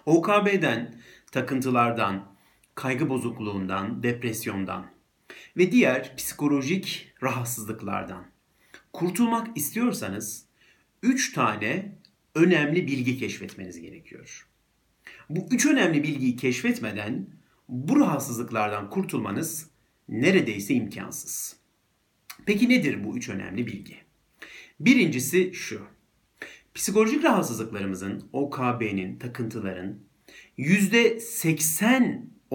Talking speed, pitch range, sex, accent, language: 75 wpm, 115-185 Hz, male, native, Turkish